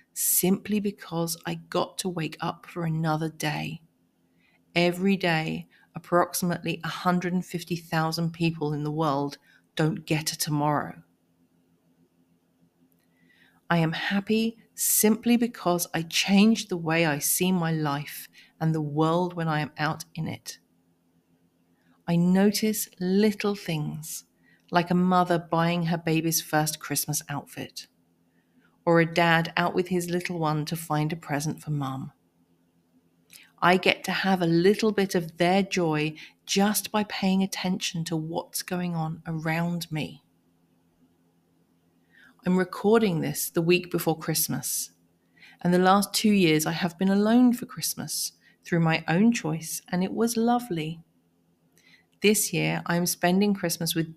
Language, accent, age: English, British, 40-59